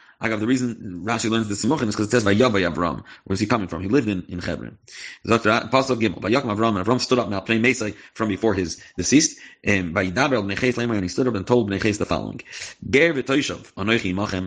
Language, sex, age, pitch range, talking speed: English, male, 30-49, 105-130 Hz, 160 wpm